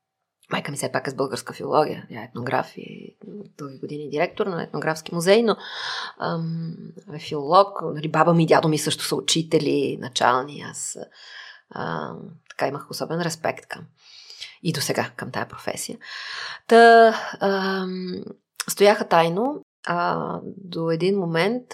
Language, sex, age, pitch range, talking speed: Bulgarian, female, 30-49, 160-205 Hz, 150 wpm